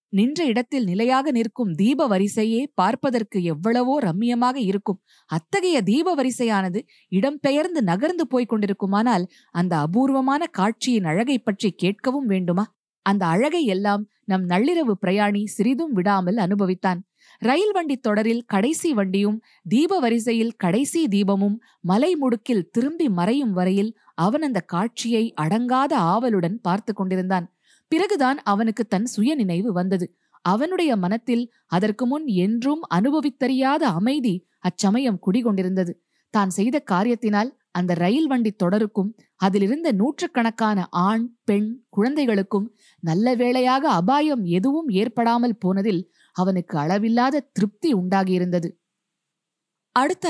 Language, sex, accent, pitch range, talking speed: Tamil, female, native, 190-255 Hz, 110 wpm